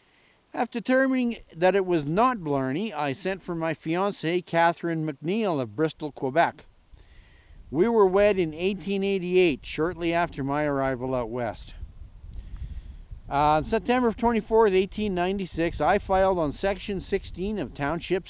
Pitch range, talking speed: 135-205 Hz, 130 wpm